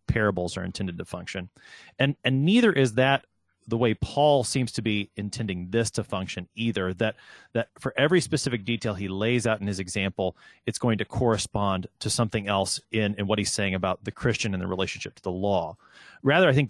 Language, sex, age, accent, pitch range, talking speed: English, male, 30-49, American, 95-130 Hz, 205 wpm